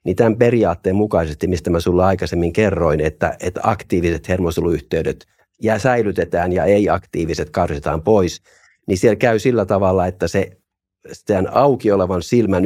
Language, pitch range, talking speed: Finnish, 85-105 Hz, 140 wpm